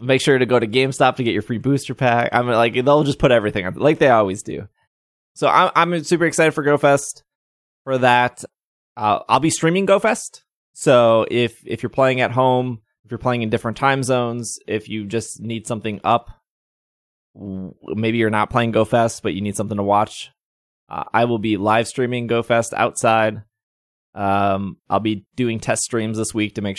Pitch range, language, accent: 105-135 Hz, English, American